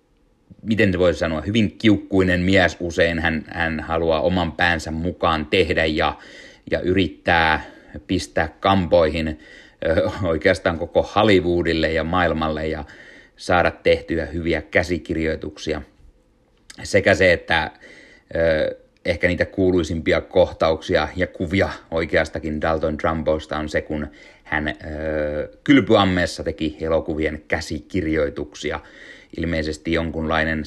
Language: Finnish